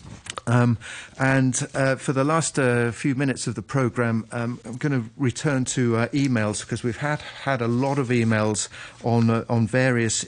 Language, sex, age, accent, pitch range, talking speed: English, male, 40-59, British, 115-140 Hz, 180 wpm